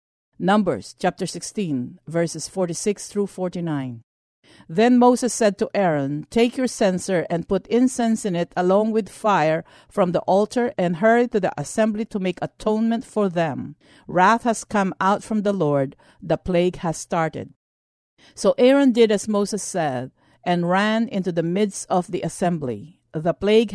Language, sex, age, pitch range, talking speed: English, female, 50-69, 160-215 Hz, 160 wpm